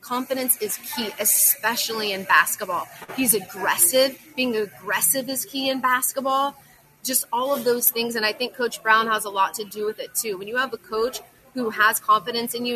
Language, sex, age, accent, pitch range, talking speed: English, female, 30-49, American, 210-260 Hz, 200 wpm